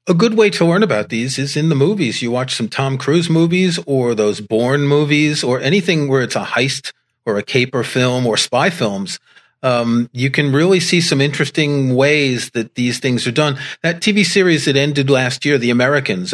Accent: American